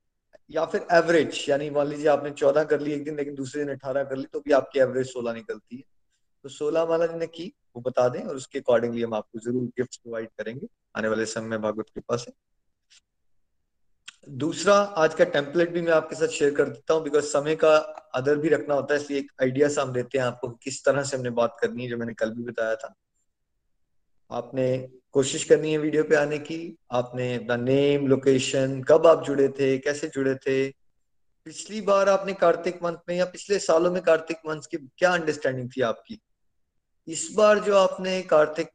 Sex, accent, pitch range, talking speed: male, native, 130-170 Hz, 205 wpm